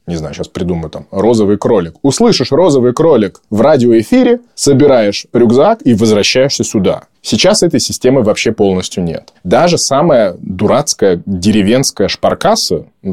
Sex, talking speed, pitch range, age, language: male, 135 wpm, 100-130 Hz, 20-39, Russian